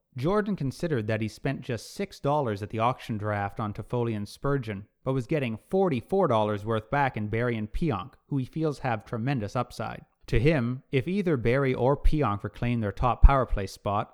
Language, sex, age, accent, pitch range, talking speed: English, male, 30-49, American, 110-145 Hz, 185 wpm